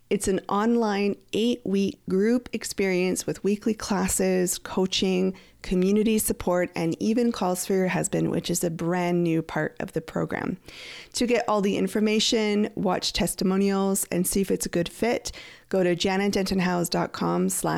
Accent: American